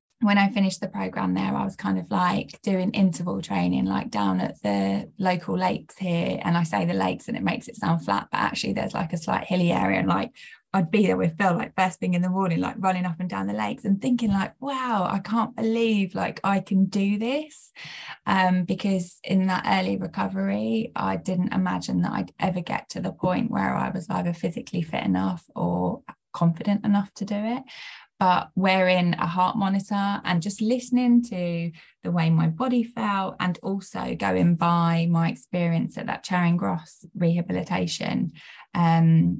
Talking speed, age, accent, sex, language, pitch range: 195 wpm, 10-29, British, female, English, 165-205 Hz